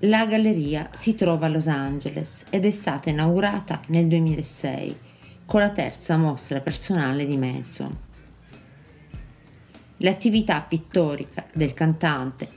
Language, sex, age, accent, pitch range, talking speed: English, female, 40-59, Italian, 135-180 Hz, 115 wpm